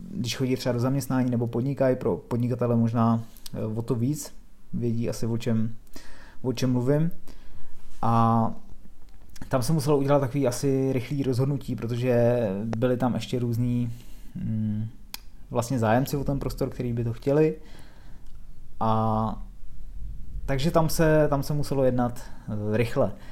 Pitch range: 110-130 Hz